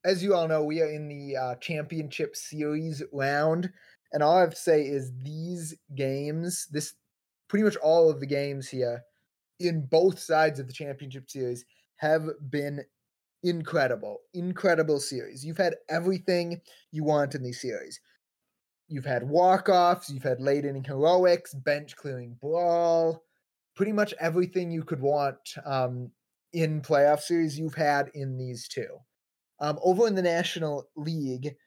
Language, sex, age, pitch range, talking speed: English, male, 20-39, 140-165 Hz, 150 wpm